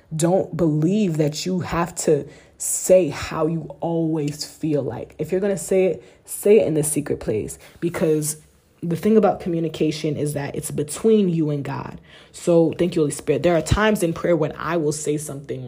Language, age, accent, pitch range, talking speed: English, 20-39, American, 140-170 Hz, 190 wpm